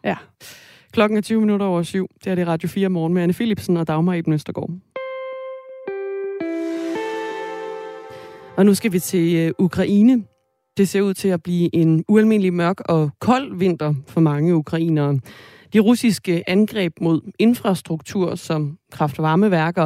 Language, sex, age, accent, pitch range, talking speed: Danish, female, 30-49, native, 160-210 Hz, 145 wpm